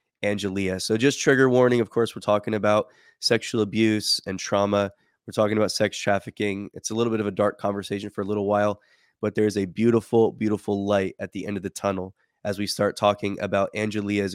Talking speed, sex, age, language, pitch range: 205 wpm, male, 20-39, English, 100-115 Hz